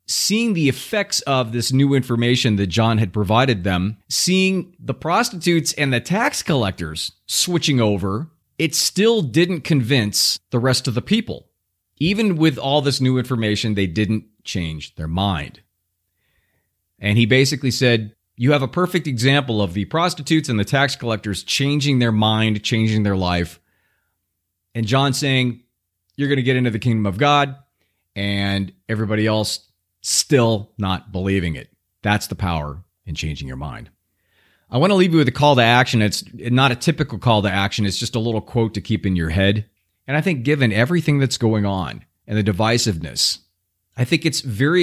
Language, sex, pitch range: English, male, 100-140 Hz